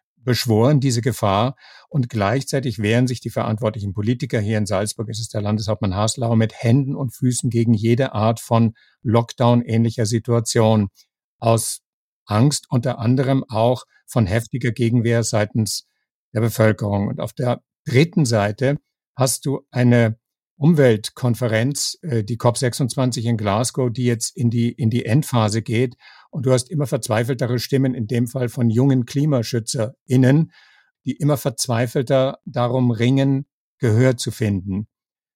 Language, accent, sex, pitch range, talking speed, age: German, German, male, 110-130 Hz, 135 wpm, 50-69